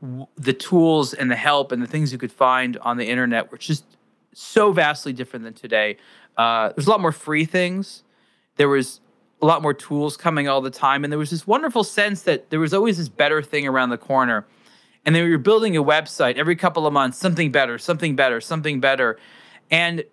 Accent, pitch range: American, 130-170 Hz